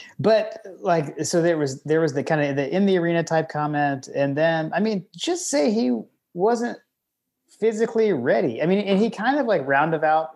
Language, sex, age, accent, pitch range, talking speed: English, male, 30-49, American, 115-155 Hz, 195 wpm